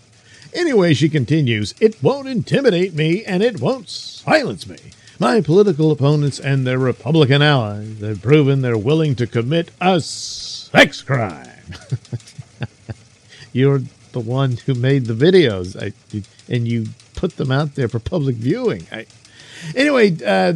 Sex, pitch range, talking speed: male, 120-170 Hz, 130 wpm